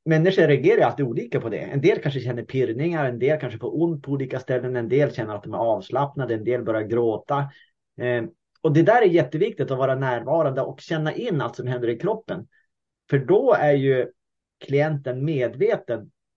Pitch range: 125-155 Hz